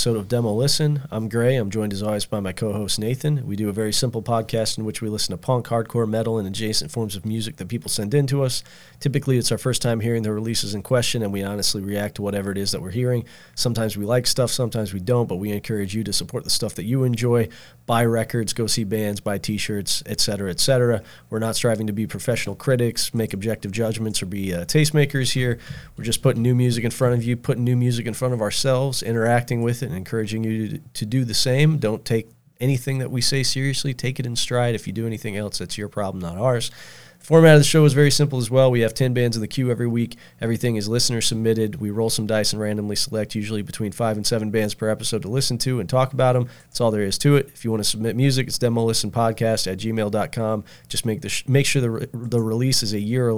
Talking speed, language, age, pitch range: 245 wpm, English, 40-59, 110-125 Hz